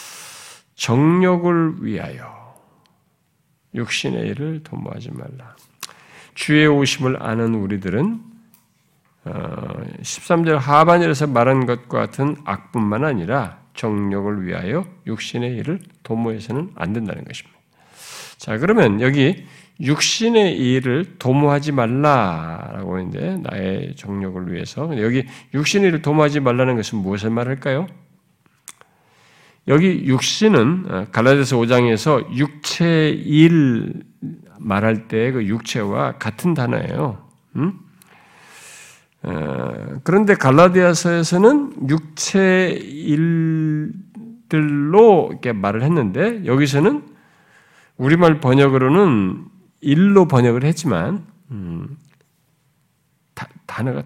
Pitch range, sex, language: 125-170 Hz, male, Korean